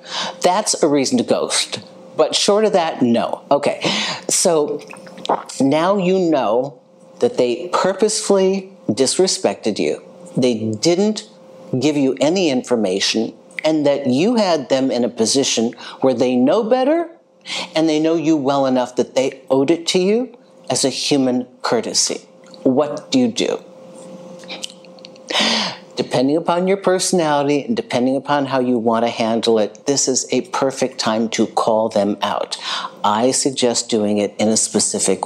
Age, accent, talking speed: 50-69, American, 150 wpm